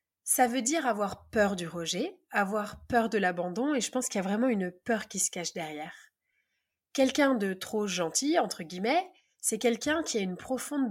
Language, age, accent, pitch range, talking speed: French, 20-39, French, 195-260 Hz, 200 wpm